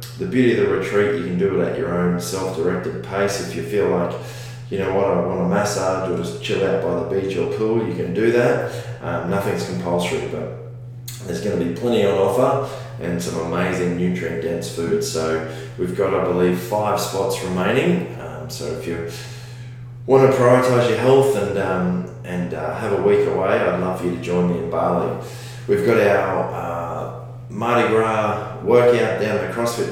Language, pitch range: English, 90-120 Hz